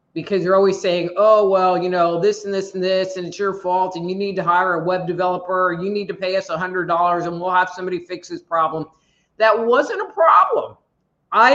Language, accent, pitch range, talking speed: English, American, 175-210 Hz, 235 wpm